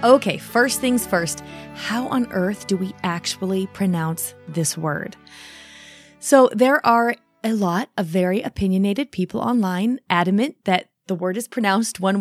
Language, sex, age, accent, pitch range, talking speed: English, female, 30-49, American, 180-240 Hz, 150 wpm